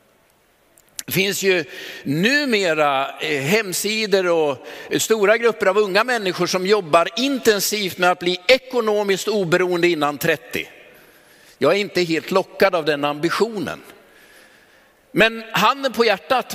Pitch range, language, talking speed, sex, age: 175-230 Hz, Swedish, 125 wpm, male, 50-69